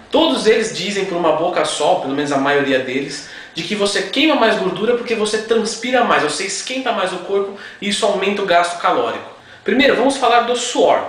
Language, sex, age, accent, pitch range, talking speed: Portuguese, male, 20-39, Brazilian, 190-245 Hz, 205 wpm